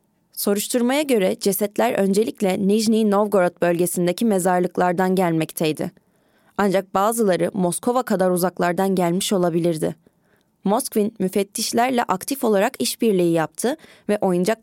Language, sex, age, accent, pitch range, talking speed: Turkish, female, 20-39, native, 180-220 Hz, 100 wpm